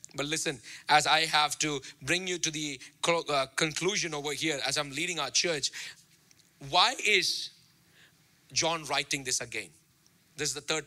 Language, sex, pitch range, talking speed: English, male, 165-250 Hz, 155 wpm